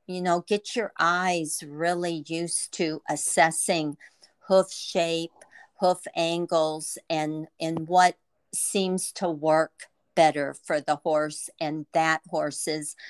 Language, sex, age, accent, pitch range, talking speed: English, female, 50-69, American, 155-180 Hz, 120 wpm